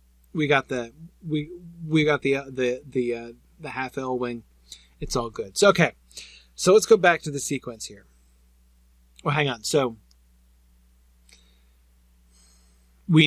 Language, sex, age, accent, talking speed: English, male, 40-59, American, 150 wpm